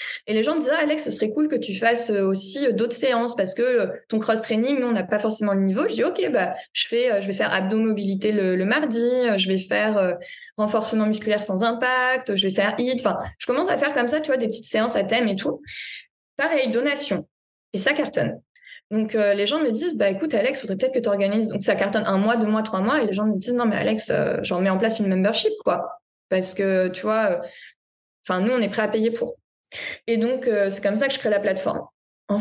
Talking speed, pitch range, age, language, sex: 255 wpm, 195-245 Hz, 20-39, French, female